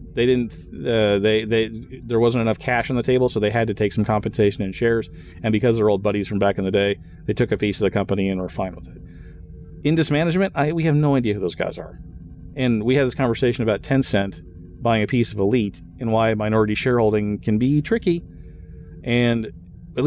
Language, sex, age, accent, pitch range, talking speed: English, male, 40-59, American, 95-125 Hz, 225 wpm